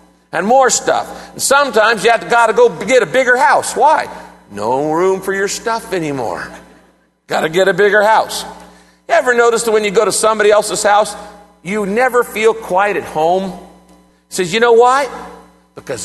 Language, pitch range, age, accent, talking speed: English, 190-260 Hz, 50-69, American, 170 wpm